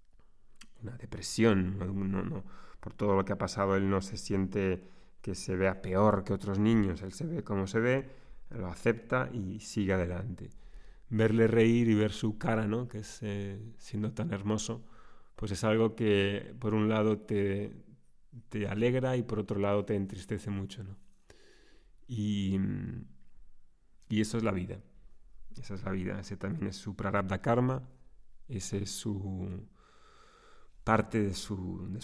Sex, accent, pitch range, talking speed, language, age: male, Spanish, 95-115 Hz, 165 wpm, Spanish, 30-49